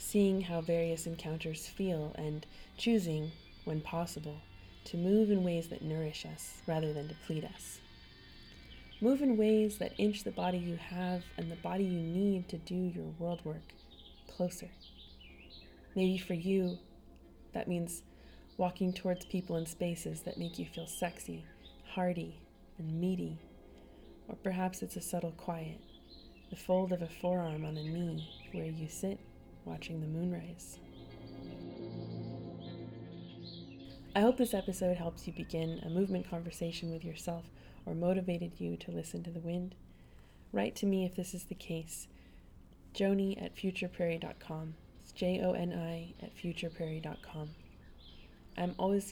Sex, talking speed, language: female, 140 wpm, English